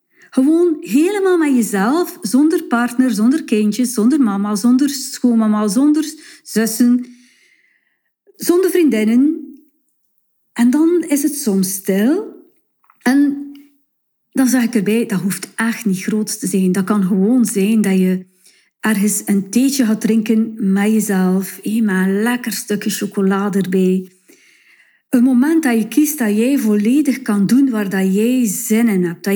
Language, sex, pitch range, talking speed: Dutch, female, 205-275 Hz, 140 wpm